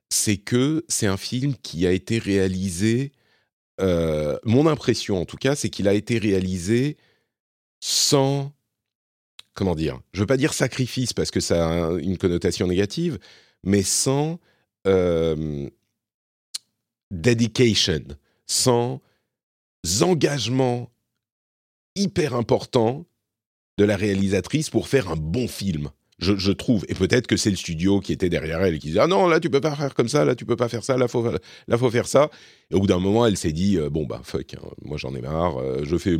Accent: French